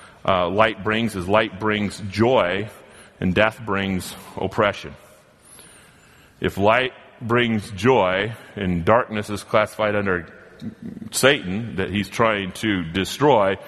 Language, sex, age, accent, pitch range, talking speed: English, male, 40-59, American, 90-115 Hz, 115 wpm